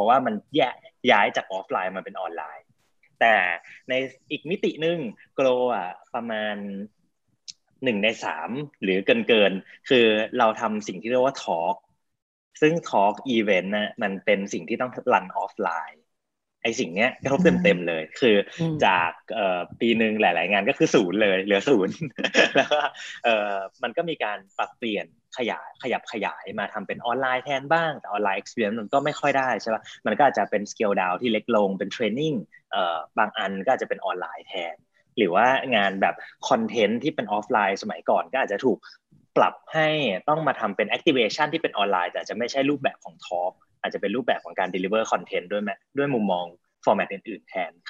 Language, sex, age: Thai, male, 20-39